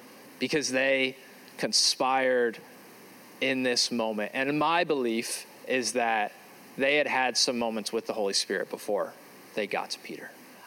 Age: 20-39